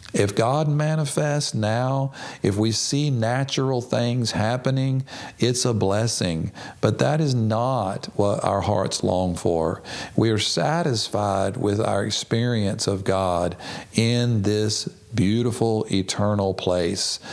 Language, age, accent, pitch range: English, 40-59, American, 90-110 Hz